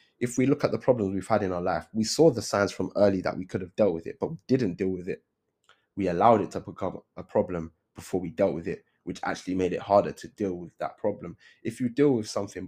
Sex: male